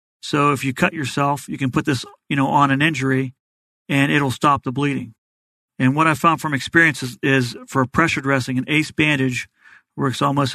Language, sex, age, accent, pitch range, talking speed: English, male, 40-59, American, 130-150 Hz, 200 wpm